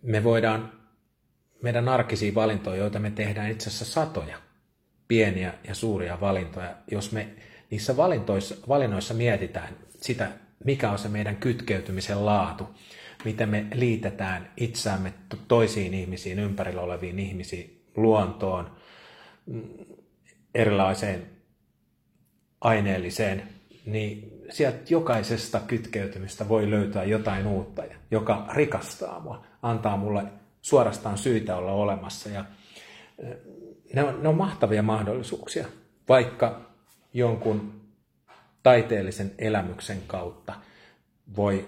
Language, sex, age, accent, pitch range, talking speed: Finnish, male, 40-59, native, 95-110 Hz, 100 wpm